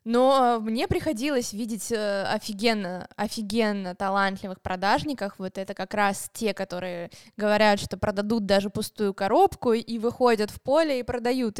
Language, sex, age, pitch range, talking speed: Russian, female, 20-39, 200-235 Hz, 135 wpm